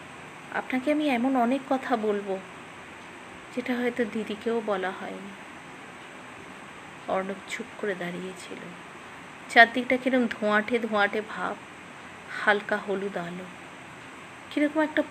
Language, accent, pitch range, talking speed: English, Indian, 200-255 Hz, 100 wpm